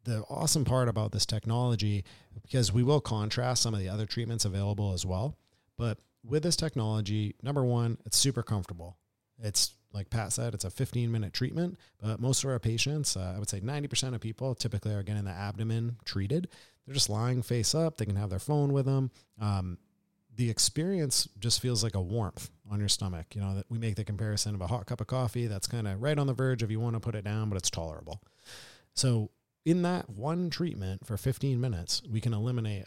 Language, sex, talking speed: English, male, 210 wpm